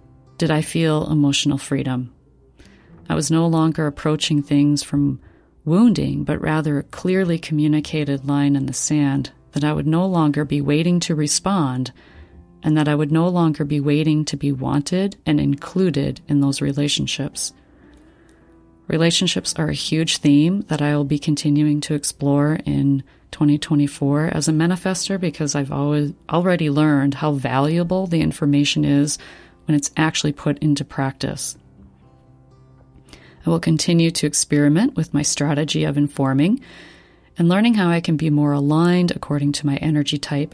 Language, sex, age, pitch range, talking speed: English, female, 40-59, 145-160 Hz, 150 wpm